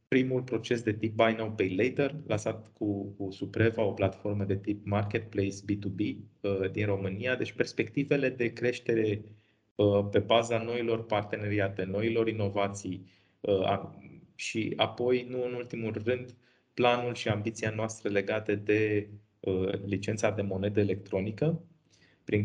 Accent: native